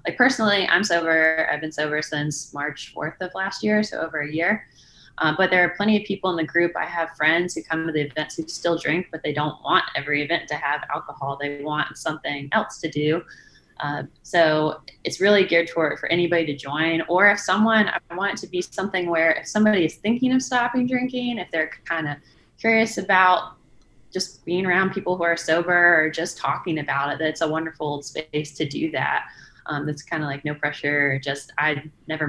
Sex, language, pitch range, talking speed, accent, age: female, English, 145-180 Hz, 215 wpm, American, 20-39